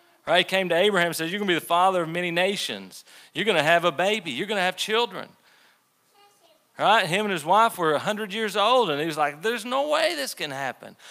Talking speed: 250 wpm